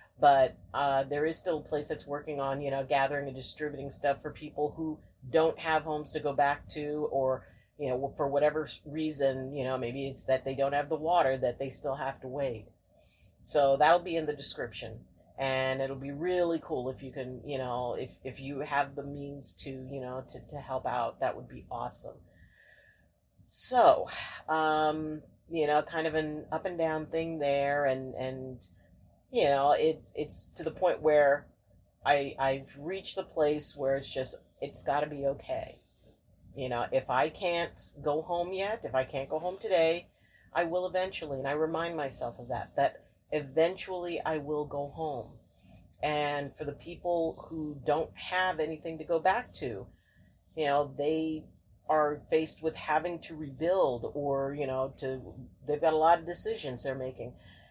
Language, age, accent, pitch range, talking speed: English, 40-59, American, 130-155 Hz, 185 wpm